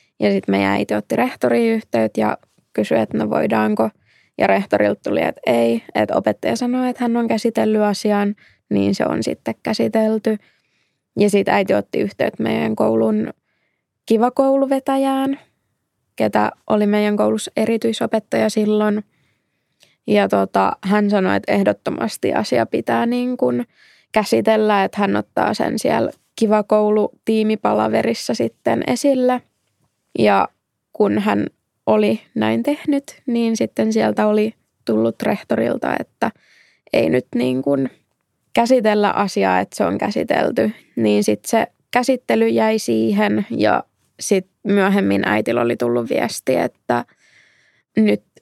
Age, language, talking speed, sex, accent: 20-39, Finnish, 125 wpm, female, native